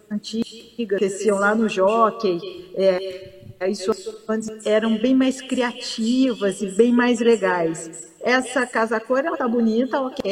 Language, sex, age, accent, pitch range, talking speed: Portuguese, female, 40-59, Brazilian, 210-255 Hz, 130 wpm